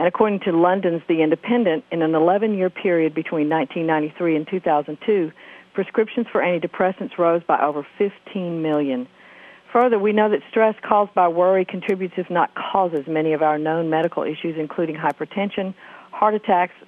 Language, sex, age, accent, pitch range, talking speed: English, female, 50-69, American, 160-195 Hz, 155 wpm